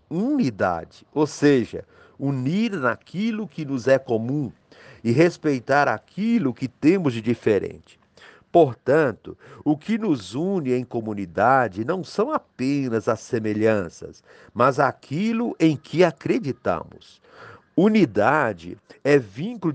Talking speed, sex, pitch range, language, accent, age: 110 wpm, male, 120-165 Hz, Portuguese, Brazilian, 50-69